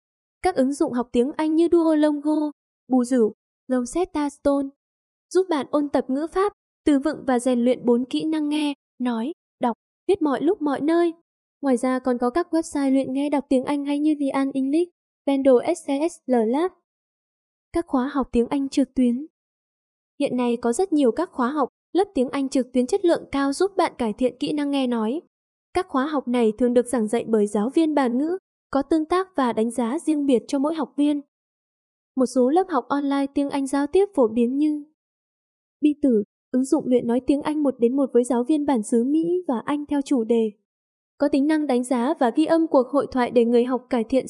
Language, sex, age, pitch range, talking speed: Vietnamese, female, 10-29, 245-305 Hz, 215 wpm